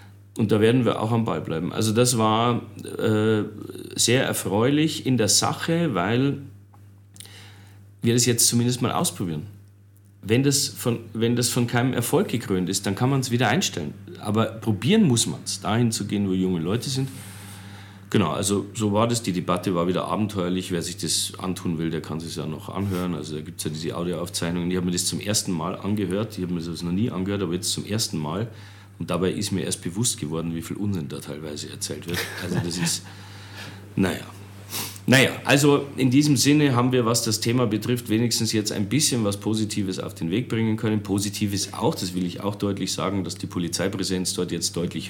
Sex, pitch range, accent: male, 95-115 Hz, German